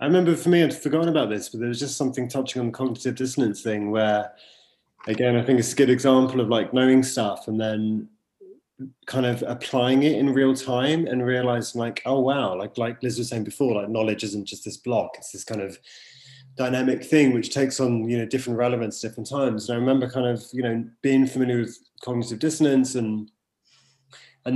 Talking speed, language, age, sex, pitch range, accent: 215 wpm, English, 20-39, male, 110-135 Hz, British